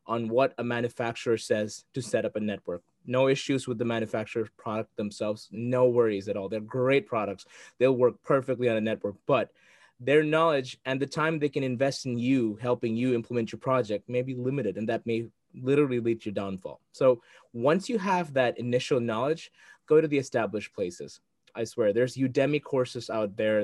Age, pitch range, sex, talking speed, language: 20-39, 105-130 Hz, male, 190 wpm, English